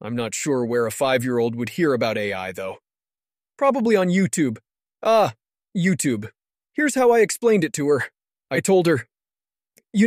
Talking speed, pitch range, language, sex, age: 160 wpm, 130-200 Hz, English, male, 30-49